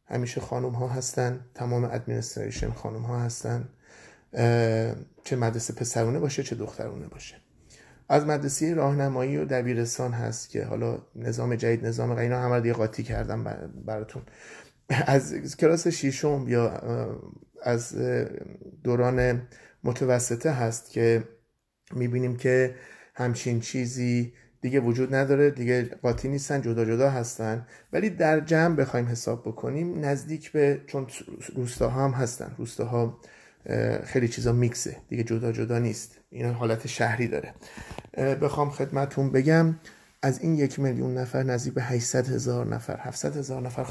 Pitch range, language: 115-135 Hz, Persian